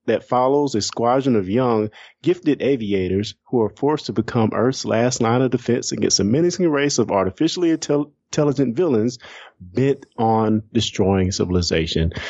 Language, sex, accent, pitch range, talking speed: English, male, American, 105-135 Hz, 145 wpm